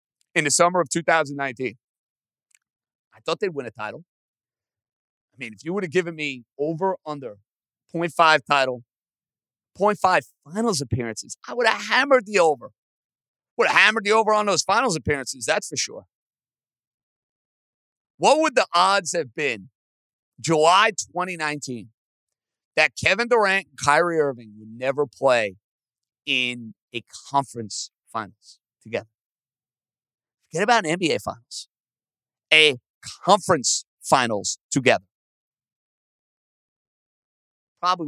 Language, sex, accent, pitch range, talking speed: English, male, American, 125-185 Hz, 120 wpm